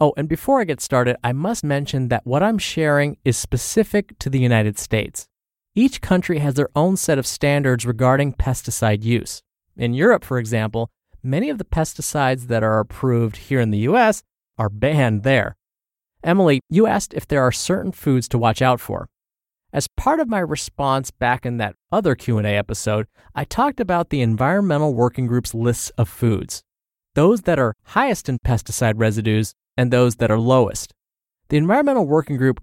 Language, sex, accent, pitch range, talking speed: English, male, American, 115-160 Hz, 180 wpm